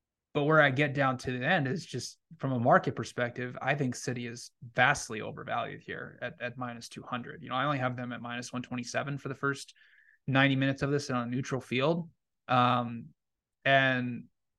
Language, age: English, 20-39